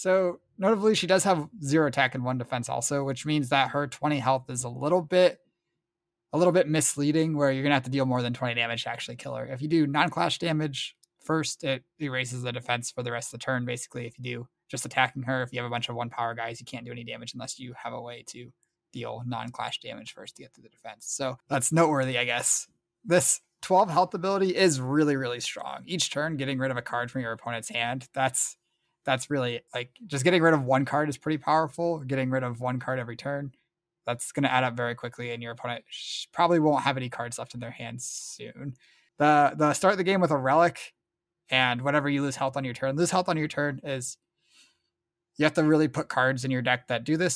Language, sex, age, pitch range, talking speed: English, male, 20-39, 125-155 Hz, 240 wpm